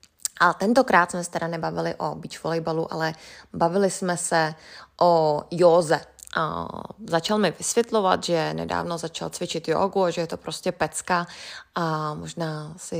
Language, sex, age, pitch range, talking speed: Czech, female, 20-39, 160-195 Hz, 150 wpm